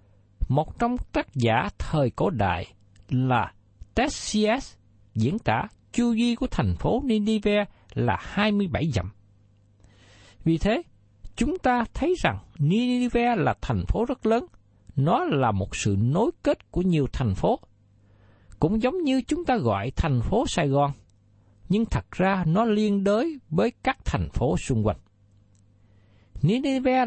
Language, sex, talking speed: Vietnamese, male, 145 wpm